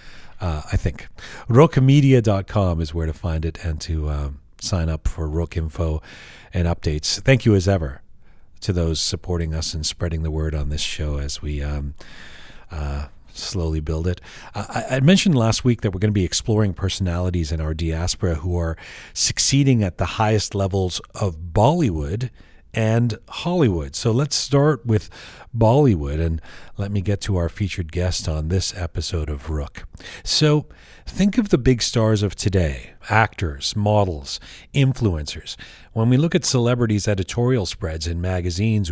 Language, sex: English, male